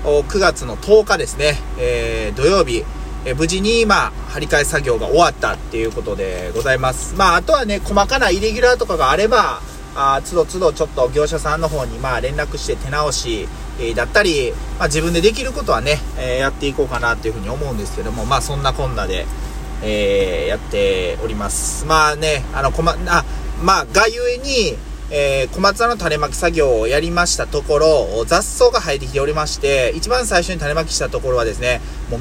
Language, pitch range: Japanese, 130-195 Hz